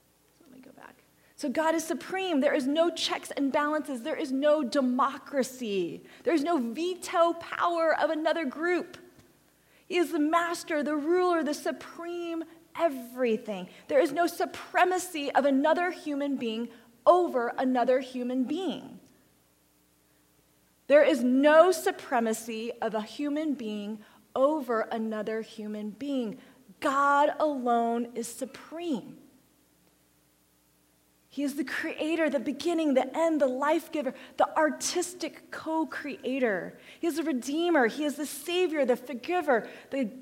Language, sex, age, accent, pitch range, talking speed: English, female, 30-49, American, 250-330 Hz, 125 wpm